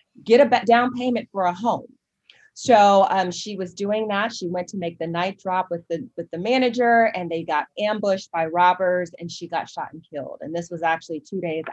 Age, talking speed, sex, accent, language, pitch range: 30-49, 220 wpm, female, American, English, 175-205 Hz